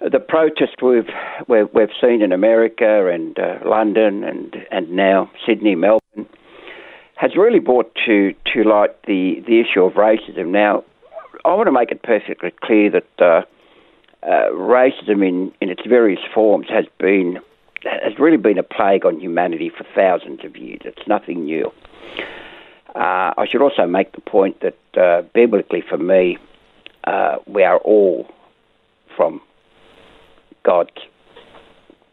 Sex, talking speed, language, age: male, 145 wpm, English, 60-79